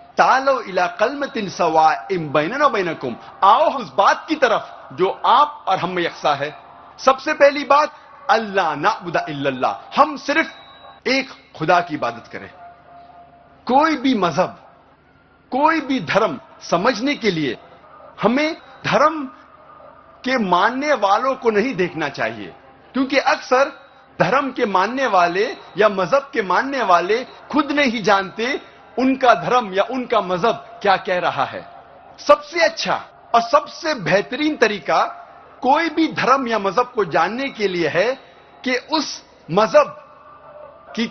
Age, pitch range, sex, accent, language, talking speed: 50-69, 195-290 Hz, male, native, Hindi, 130 wpm